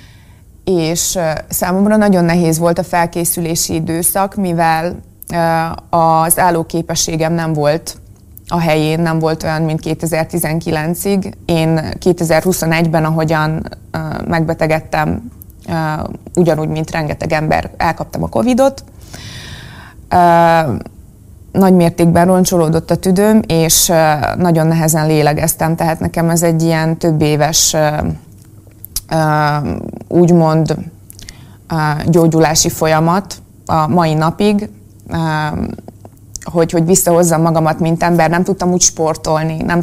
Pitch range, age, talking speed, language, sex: 155-170 Hz, 20-39, 100 wpm, Hungarian, female